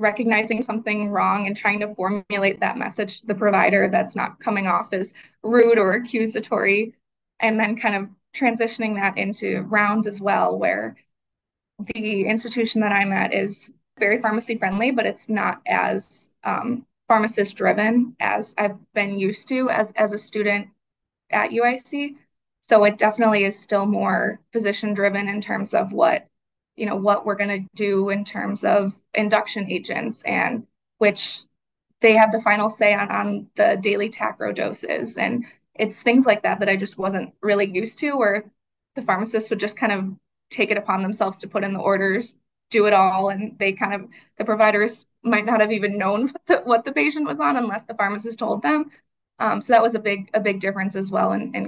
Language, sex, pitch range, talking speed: English, female, 200-225 Hz, 185 wpm